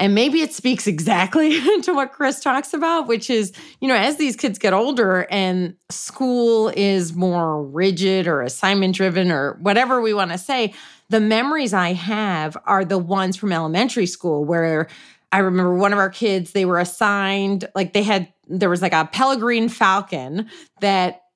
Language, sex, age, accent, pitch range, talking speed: English, female, 30-49, American, 185-245 Hz, 175 wpm